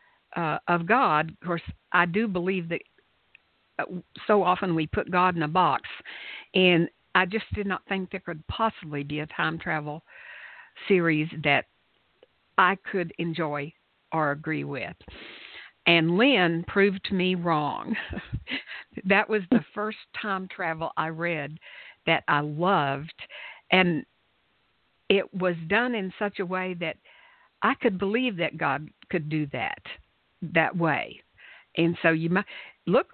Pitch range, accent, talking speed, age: 160-195 Hz, American, 140 wpm, 60-79